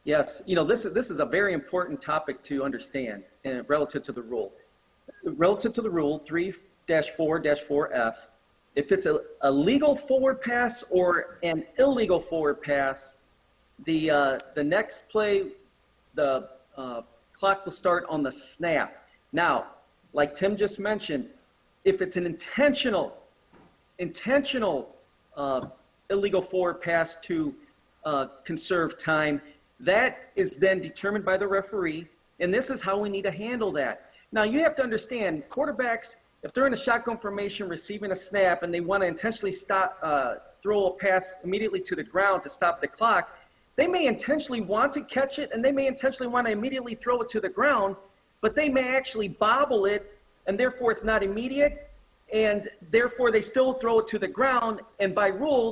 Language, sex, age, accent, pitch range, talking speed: English, male, 40-59, American, 170-245 Hz, 170 wpm